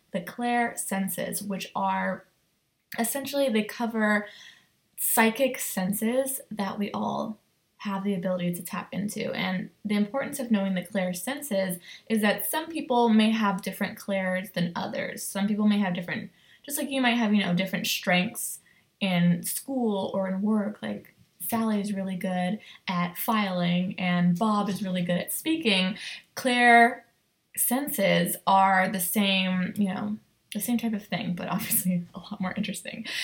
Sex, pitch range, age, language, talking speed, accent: female, 180-220 Hz, 20-39, English, 160 wpm, American